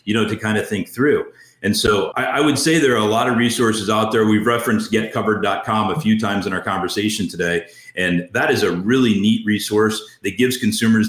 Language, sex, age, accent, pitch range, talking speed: English, male, 40-59, American, 105-120 Hz, 220 wpm